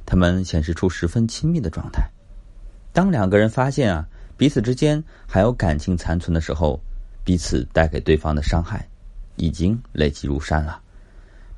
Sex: male